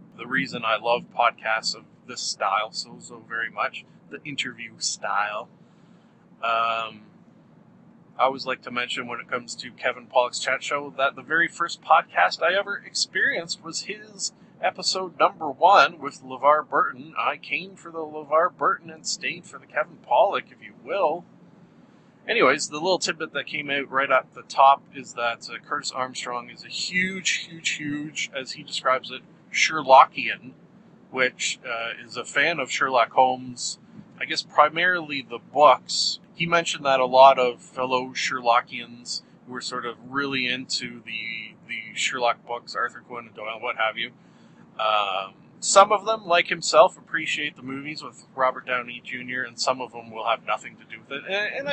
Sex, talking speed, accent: male, 175 wpm, American